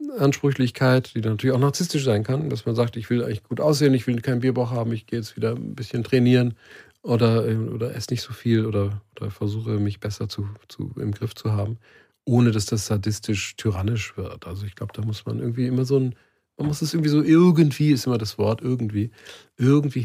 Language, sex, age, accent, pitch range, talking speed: German, male, 40-59, German, 110-125 Hz, 215 wpm